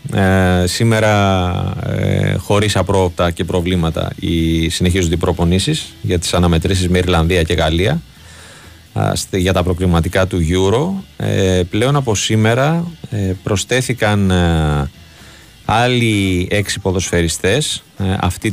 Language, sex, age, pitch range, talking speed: Greek, male, 30-49, 85-110 Hz, 115 wpm